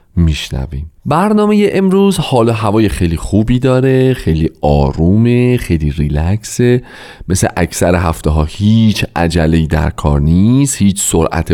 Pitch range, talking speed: 95-150 Hz, 120 wpm